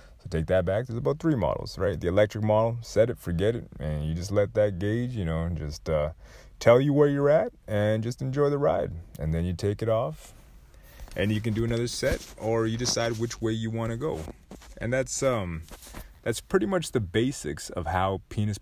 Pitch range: 90-125 Hz